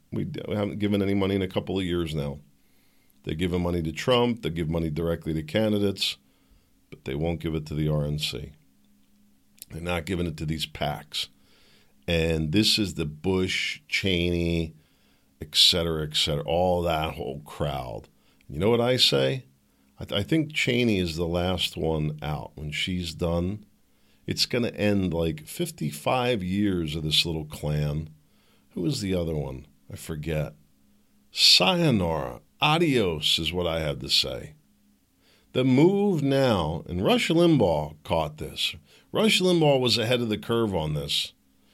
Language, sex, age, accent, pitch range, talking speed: English, male, 50-69, American, 75-105 Hz, 160 wpm